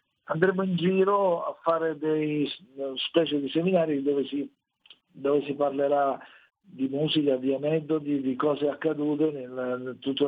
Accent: native